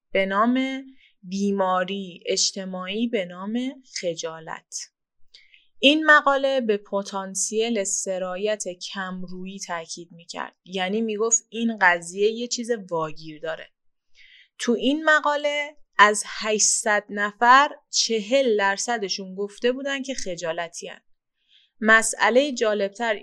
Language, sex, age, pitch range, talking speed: Persian, female, 20-39, 190-240 Hz, 100 wpm